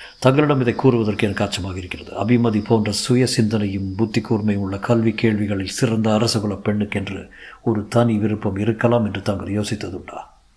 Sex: male